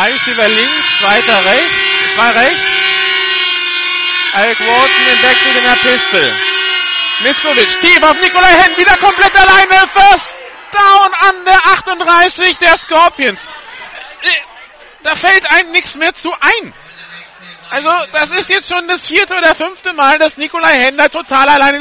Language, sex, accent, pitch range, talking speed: German, male, German, 275-370 Hz, 140 wpm